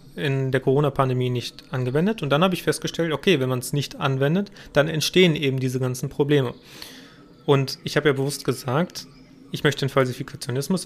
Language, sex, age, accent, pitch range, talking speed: German, male, 30-49, German, 135-160 Hz, 175 wpm